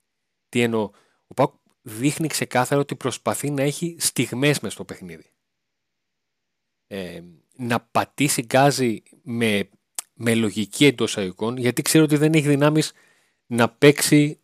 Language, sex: Greek, male